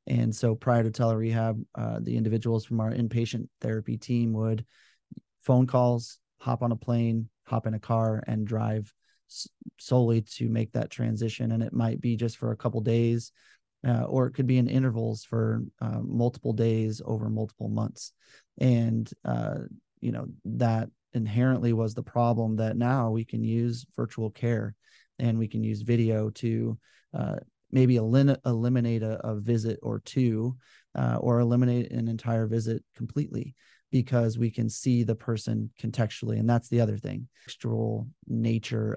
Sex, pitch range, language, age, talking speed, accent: male, 110-120 Hz, English, 30-49, 165 wpm, American